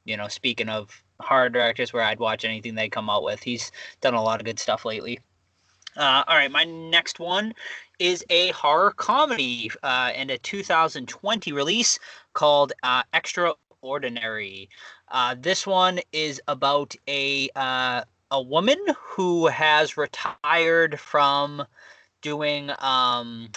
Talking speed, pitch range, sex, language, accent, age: 140 wpm, 125-155 Hz, male, English, American, 20-39